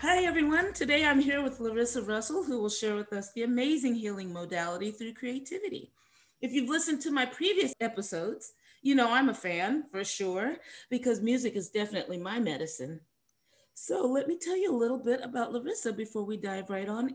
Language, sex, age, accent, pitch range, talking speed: English, female, 30-49, American, 200-275 Hz, 190 wpm